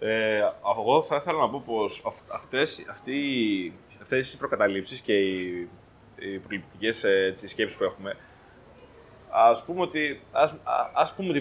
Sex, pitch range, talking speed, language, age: male, 115-175 Hz, 145 wpm, Greek, 20-39